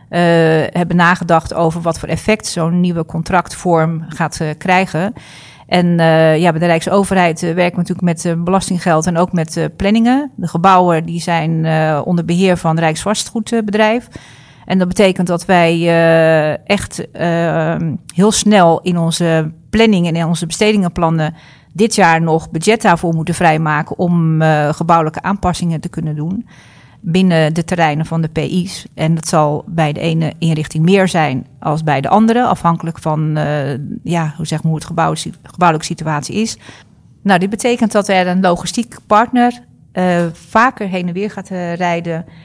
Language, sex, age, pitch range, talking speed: Dutch, female, 40-59, 160-190 Hz, 170 wpm